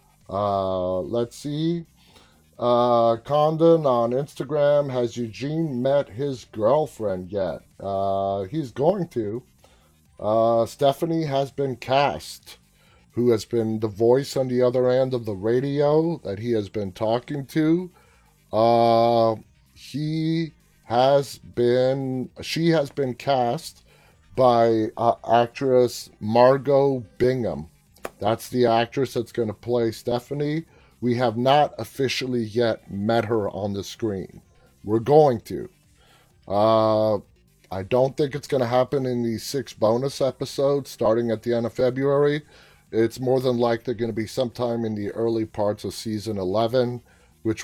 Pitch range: 110-135 Hz